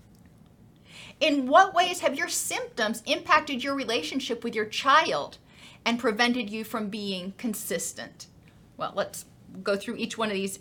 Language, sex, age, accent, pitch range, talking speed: English, female, 30-49, American, 215-270 Hz, 145 wpm